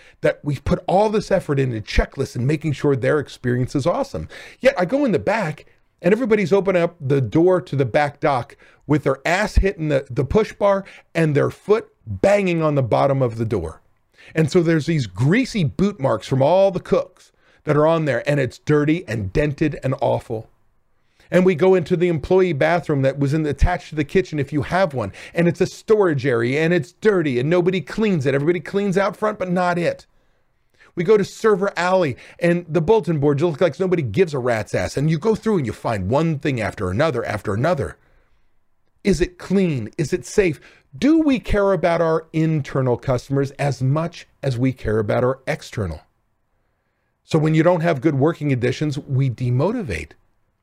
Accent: American